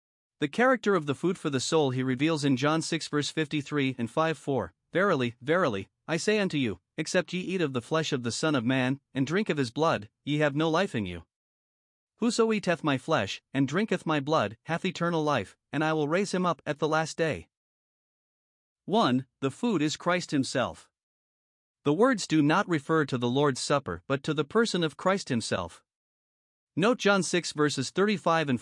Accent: American